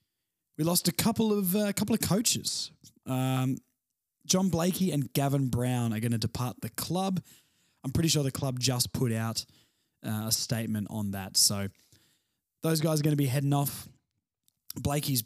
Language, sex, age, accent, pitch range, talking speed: English, male, 20-39, Australian, 120-155 Hz, 175 wpm